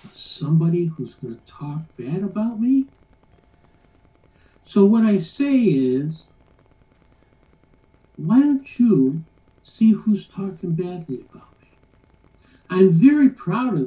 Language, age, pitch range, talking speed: English, 60-79, 150-225 Hz, 110 wpm